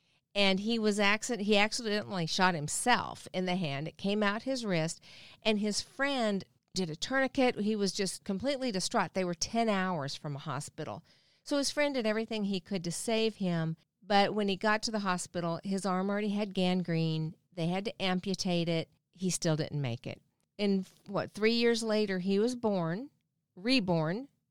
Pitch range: 175-230 Hz